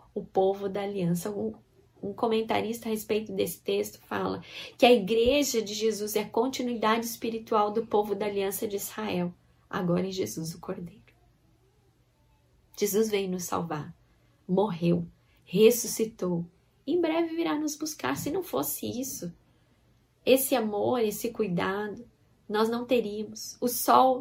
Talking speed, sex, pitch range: 140 wpm, female, 200-235 Hz